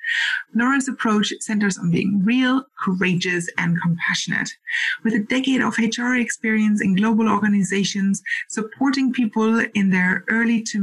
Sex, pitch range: female, 195-240 Hz